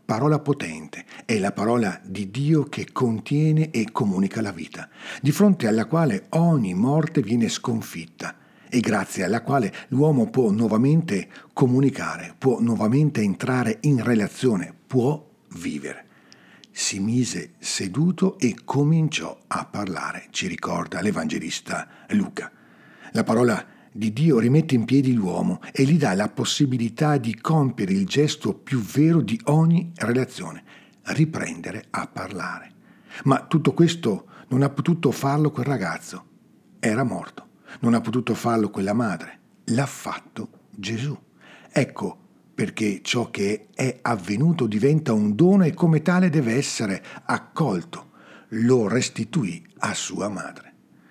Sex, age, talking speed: male, 50-69, 130 wpm